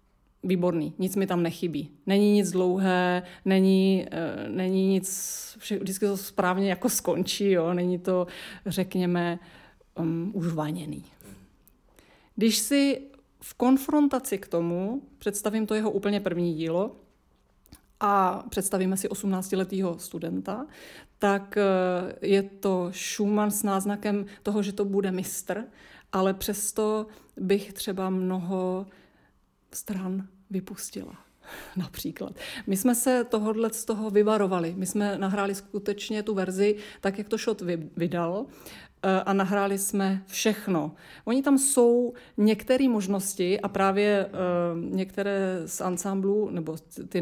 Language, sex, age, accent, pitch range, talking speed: Czech, female, 30-49, native, 185-210 Hz, 120 wpm